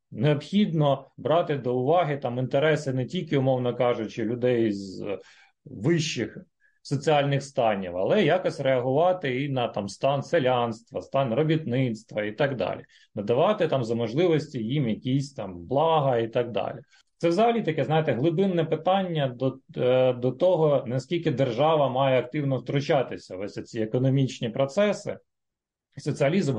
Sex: male